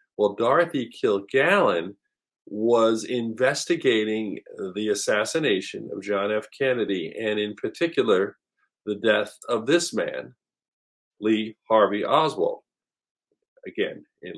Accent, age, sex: American, 50-69, male